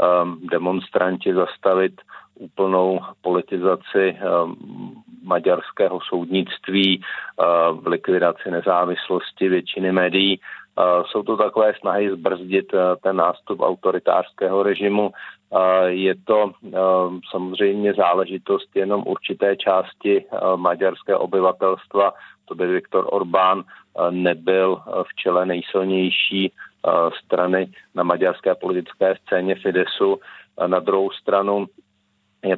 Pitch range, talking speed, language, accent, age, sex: 90-95 Hz, 85 wpm, Czech, native, 40-59, male